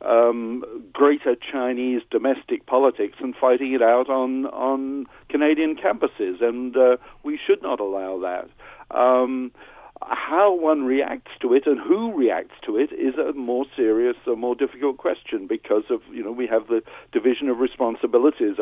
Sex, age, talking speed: male, 60-79, 160 wpm